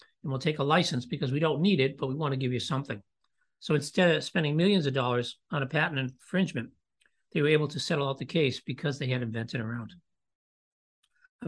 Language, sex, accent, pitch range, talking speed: English, male, American, 135-170 Hz, 220 wpm